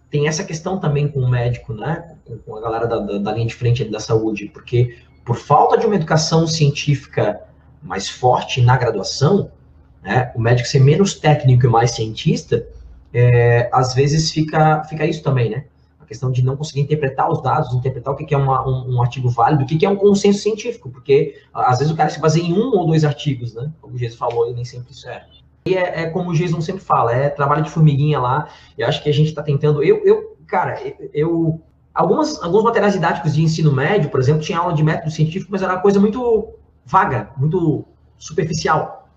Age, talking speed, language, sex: 20-39, 210 wpm, Portuguese, male